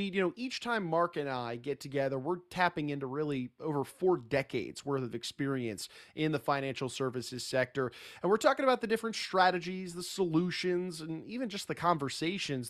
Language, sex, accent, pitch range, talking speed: English, male, American, 130-185 Hz, 180 wpm